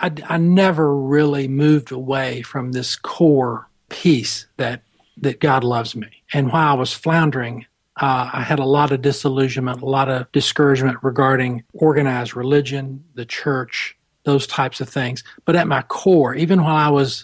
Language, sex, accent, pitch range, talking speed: English, male, American, 130-150 Hz, 165 wpm